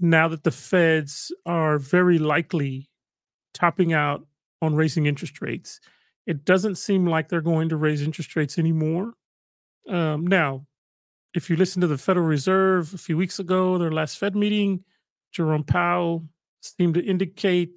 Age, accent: 30-49, American